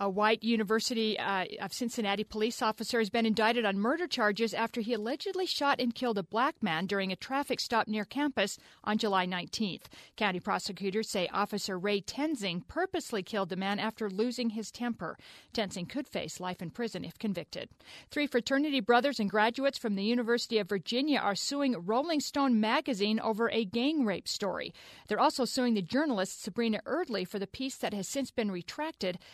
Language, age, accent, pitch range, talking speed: English, 50-69, American, 200-245 Hz, 180 wpm